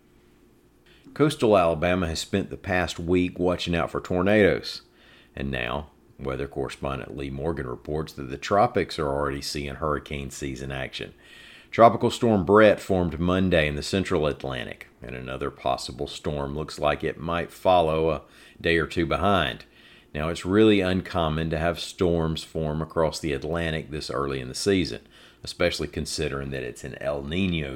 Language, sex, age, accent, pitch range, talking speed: English, male, 50-69, American, 70-85 Hz, 160 wpm